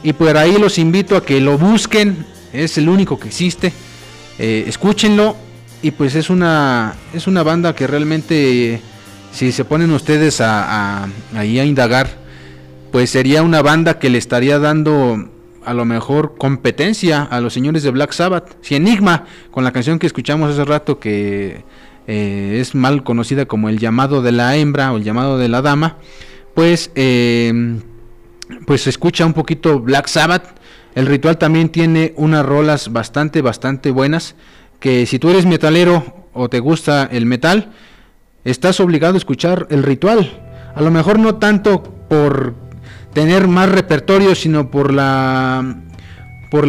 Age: 40-59